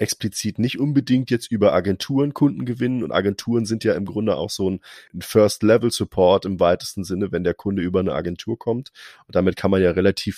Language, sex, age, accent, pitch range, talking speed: German, male, 30-49, German, 90-115 Hz, 195 wpm